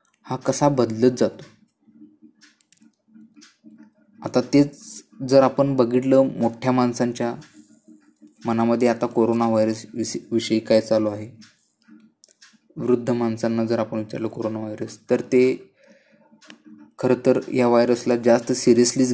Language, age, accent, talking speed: Marathi, 20-39, native, 105 wpm